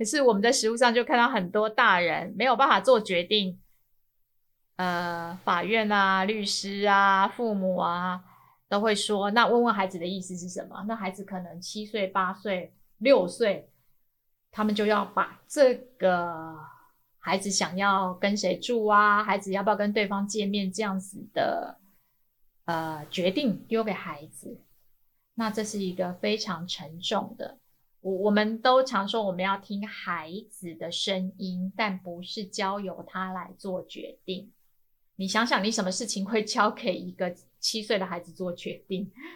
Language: Chinese